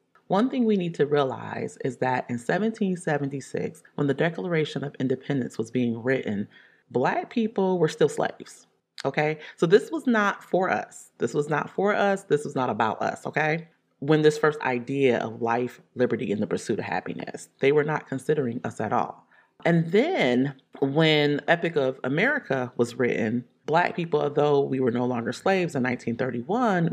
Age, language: 30-49, English